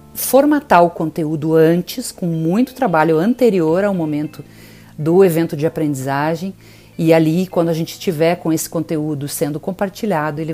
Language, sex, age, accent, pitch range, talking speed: Portuguese, female, 50-69, Brazilian, 140-185 Hz, 150 wpm